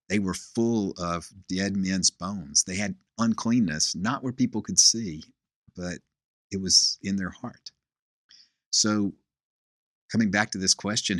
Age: 50-69